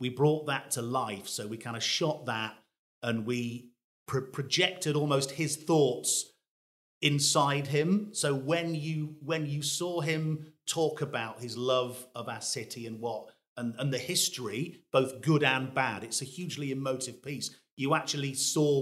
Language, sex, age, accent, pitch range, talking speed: English, male, 40-59, British, 120-145 Hz, 165 wpm